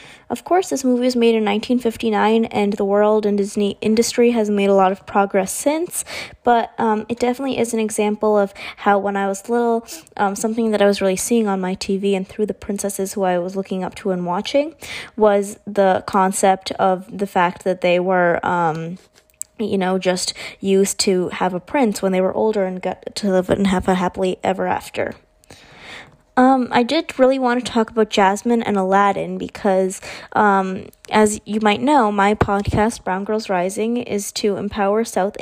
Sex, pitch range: female, 190-225 Hz